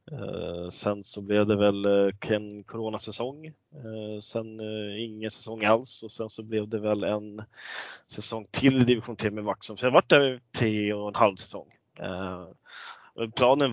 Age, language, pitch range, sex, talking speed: 20-39, Swedish, 105-115 Hz, male, 165 wpm